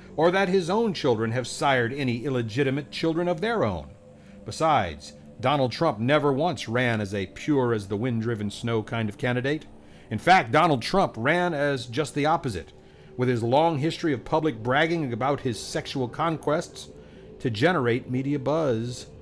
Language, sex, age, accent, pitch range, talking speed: English, male, 50-69, American, 110-155 Hz, 165 wpm